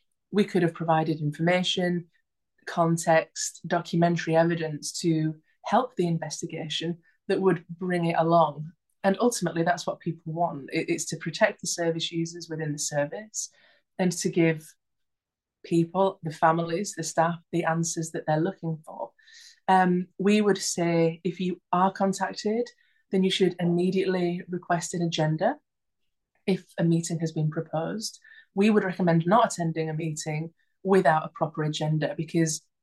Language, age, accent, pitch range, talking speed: English, 20-39, British, 165-190 Hz, 145 wpm